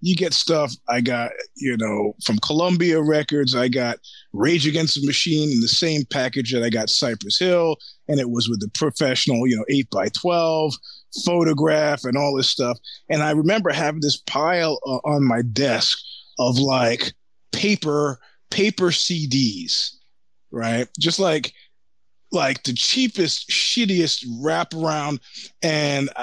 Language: English